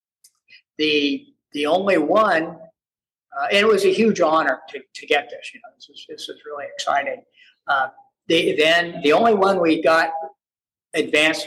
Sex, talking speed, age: male, 165 wpm, 50-69